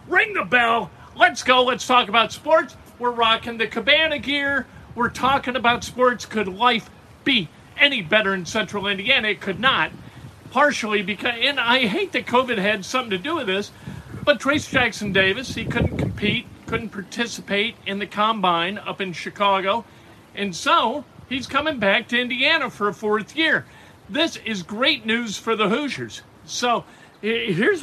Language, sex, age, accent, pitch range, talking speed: English, male, 50-69, American, 180-240 Hz, 165 wpm